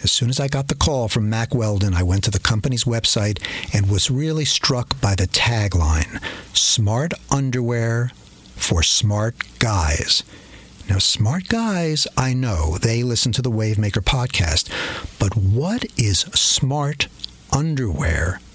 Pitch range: 105-135 Hz